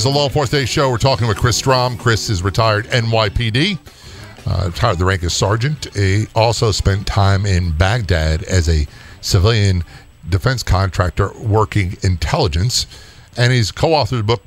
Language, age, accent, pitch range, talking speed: English, 50-69, American, 95-135 Hz, 170 wpm